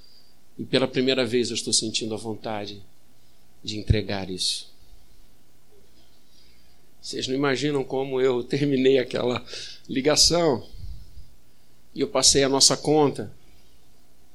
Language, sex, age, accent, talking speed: Portuguese, male, 50-69, Brazilian, 110 wpm